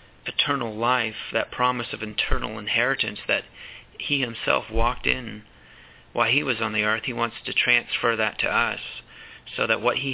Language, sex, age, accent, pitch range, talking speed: English, male, 30-49, American, 110-125 Hz, 170 wpm